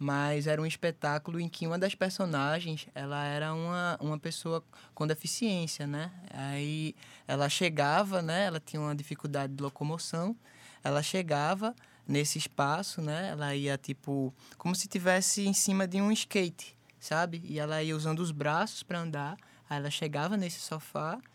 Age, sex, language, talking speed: 20-39, male, Portuguese, 160 wpm